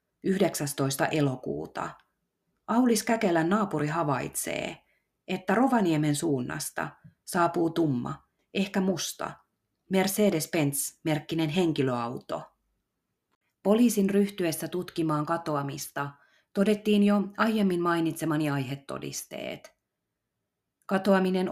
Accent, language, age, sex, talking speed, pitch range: native, Finnish, 30-49, female, 75 wpm, 150-195 Hz